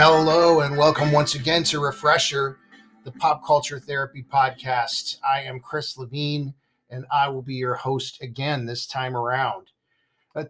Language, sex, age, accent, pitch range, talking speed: English, male, 50-69, American, 130-165 Hz, 155 wpm